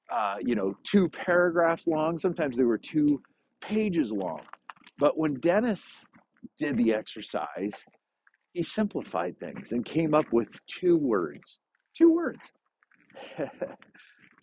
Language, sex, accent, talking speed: English, male, American, 115 wpm